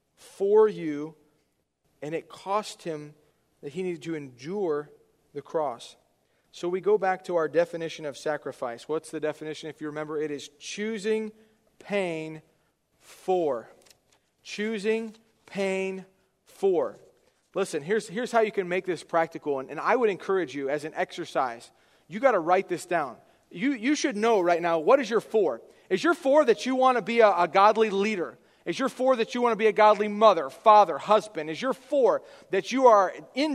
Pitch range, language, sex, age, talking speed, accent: 170-245 Hz, English, male, 40-59, 180 wpm, American